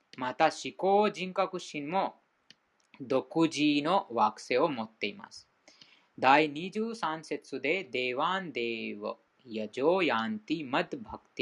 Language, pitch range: Japanese, 140-185 Hz